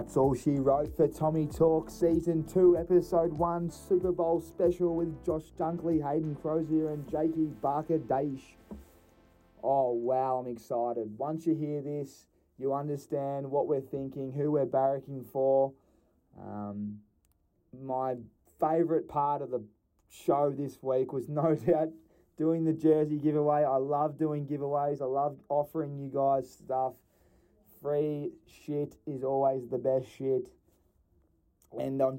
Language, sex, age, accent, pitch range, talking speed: English, male, 20-39, Australian, 120-150 Hz, 140 wpm